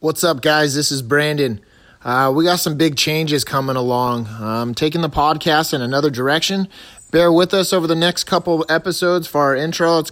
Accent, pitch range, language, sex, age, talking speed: American, 95-150 Hz, English, male, 30-49, 210 wpm